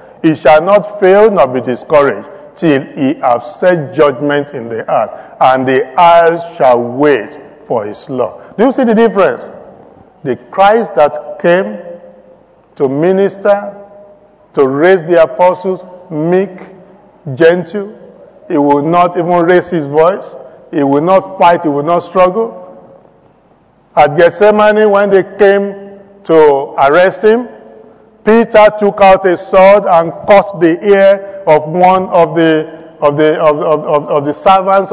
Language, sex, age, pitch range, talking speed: English, male, 50-69, 150-200 Hz, 145 wpm